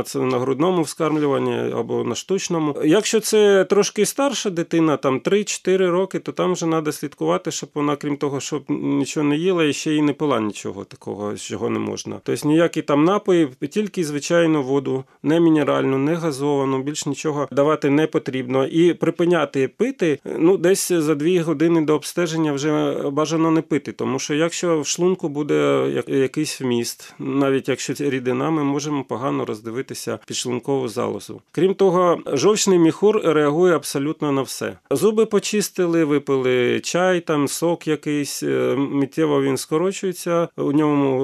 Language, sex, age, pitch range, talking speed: Ukrainian, male, 30-49, 135-170 Hz, 150 wpm